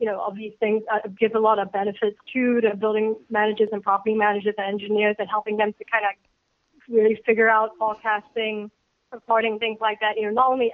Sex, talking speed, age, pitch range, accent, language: female, 205 wpm, 20-39, 215-240 Hz, American, English